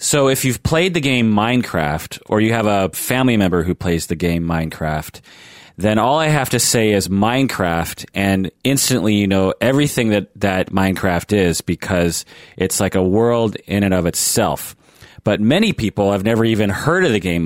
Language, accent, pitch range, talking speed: English, American, 90-115 Hz, 185 wpm